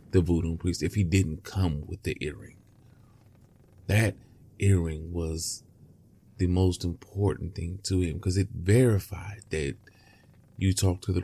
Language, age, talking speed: English, 30-49, 145 wpm